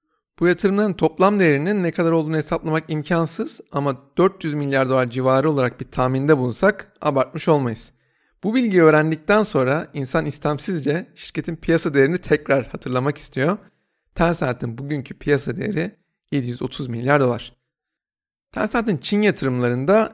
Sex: male